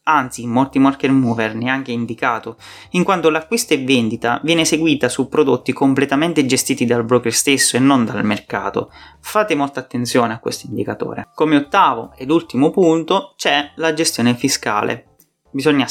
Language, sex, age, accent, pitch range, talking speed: English, male, 30-49, Italian, 120-160 Hz, 155 wpm